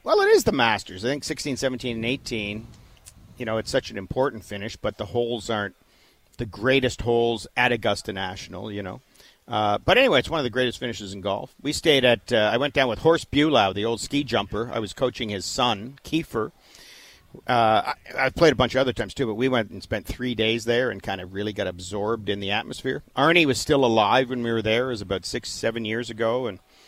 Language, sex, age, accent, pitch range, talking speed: English, male, 50-69, American, 105-130 Hz, 230 wpm